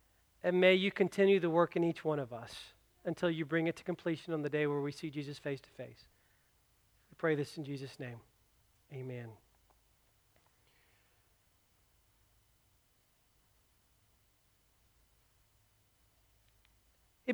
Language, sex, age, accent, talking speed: English, male, 40-59, American, 120 wpm